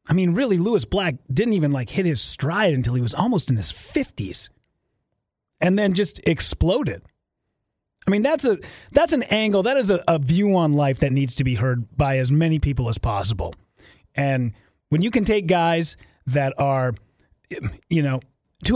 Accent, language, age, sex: American, English, 30-49, male